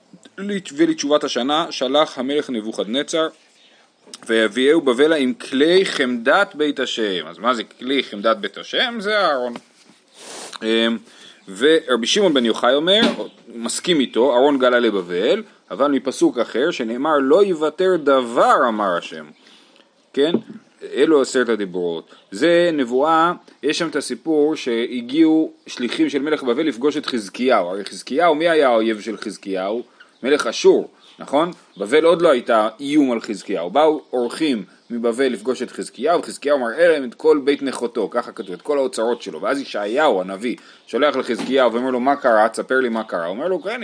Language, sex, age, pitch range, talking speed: Hebrew, male, 30-49, 115-165 Hz, 150 wpm